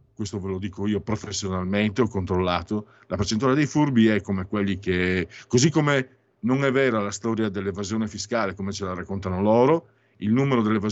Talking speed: 175 wpm